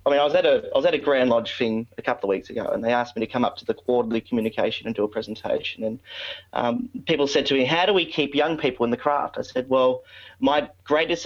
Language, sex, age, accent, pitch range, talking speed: English, male, 30-49, Australian, 115-145 Hz, 265 wpm